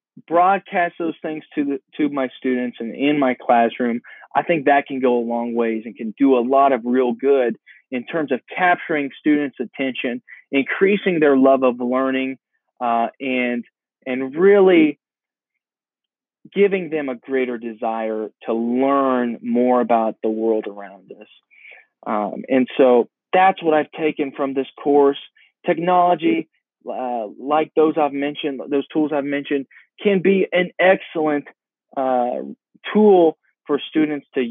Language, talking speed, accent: English, 145 wpm, American